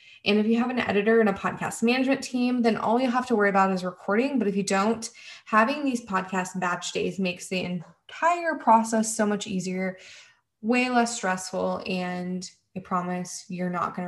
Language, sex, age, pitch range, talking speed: English, female, 20-39, 180-230 Hz, 190 wpm